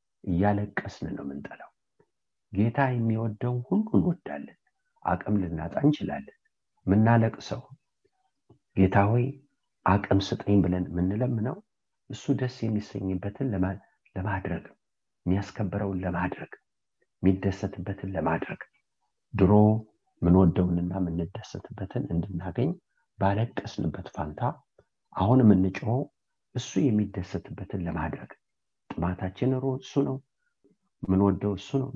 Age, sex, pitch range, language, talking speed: 60-79, male, 95-125 Hz, English, 75 wpm